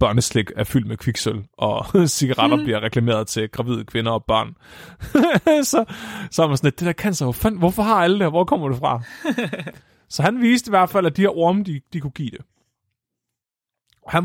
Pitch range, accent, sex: 125-170 Hz, native, male